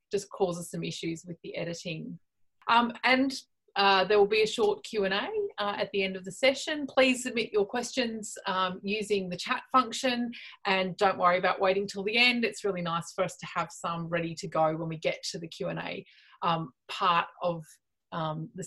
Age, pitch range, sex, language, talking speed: 30-49, 185-235 Hz, female, English, 195 wpm